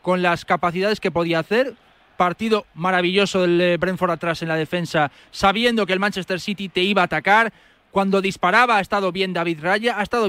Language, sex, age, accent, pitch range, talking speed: Spanish, male, 20-39, Spanish, 165-215 Hz, 185 wpm